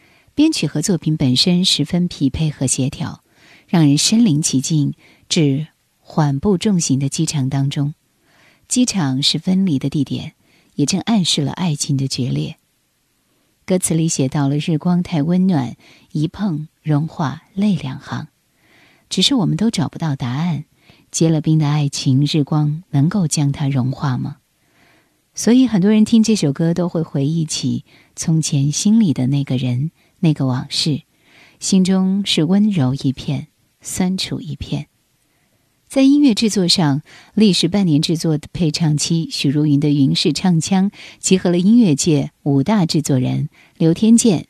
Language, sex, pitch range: Chinese, female, 140-185 Hz